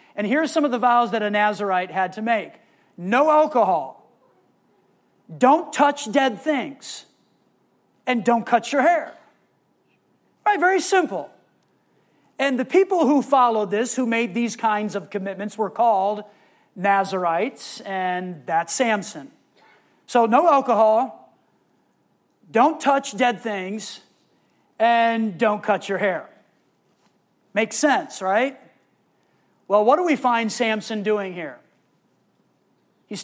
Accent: American